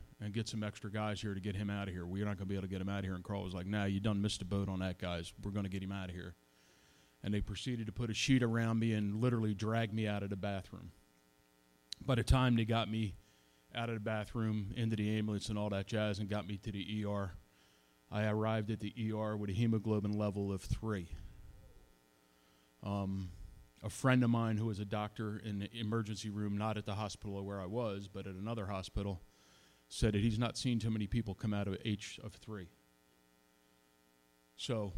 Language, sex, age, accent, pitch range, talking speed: English, male, 30-49, American, 95-110 Hz, 230 wpm